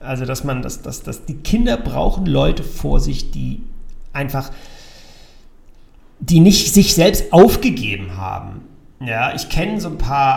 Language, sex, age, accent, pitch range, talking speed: German, male, 40-59, German, 110-145 Hz, 150 wpm